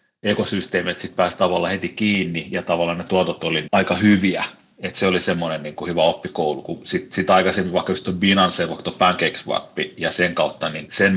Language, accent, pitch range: Finnish, native, 85-100 Hz